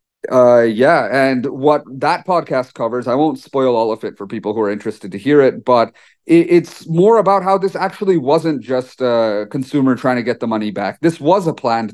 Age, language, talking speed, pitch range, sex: 30-49, English, 210 wpm, 120-160 Hz, male